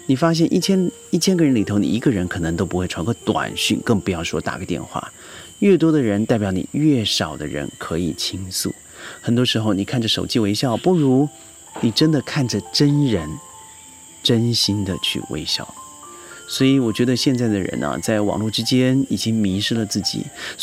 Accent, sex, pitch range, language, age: native, male, 100-130 Hz, Chinese, 30-49